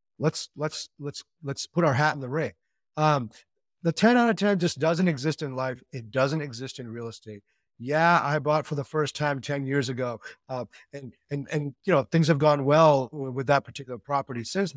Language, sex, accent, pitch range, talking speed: English, male, American, 135-175 Hz, 210 wpm